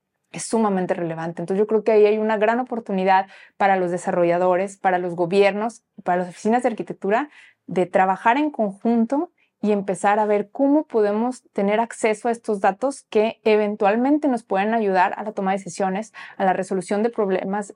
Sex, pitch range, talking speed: female, 185-230 Hz, 180 wpm